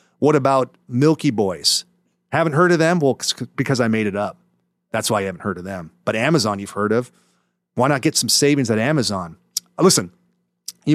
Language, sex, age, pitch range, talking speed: English, male, 40-59, 110-150 Hz, 195 wpm